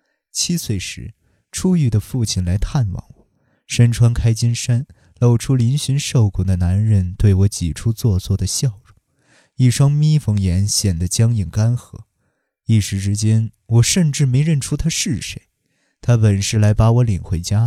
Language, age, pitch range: Chinese, 20-39, 100-130 Hz